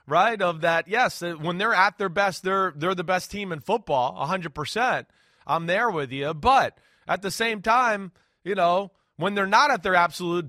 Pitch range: 170-230 Hz